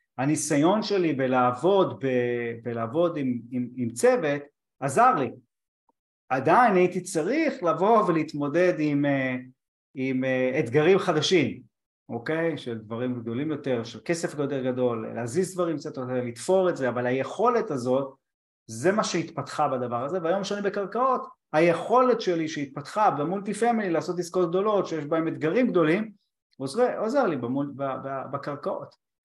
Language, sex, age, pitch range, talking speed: Hebrew, male, 30-49, 130-185 Hz, 135 wpm